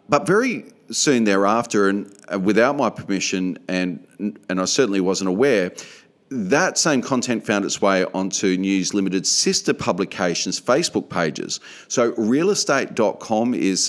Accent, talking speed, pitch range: Australian, 130 wpm, 95-125 Hz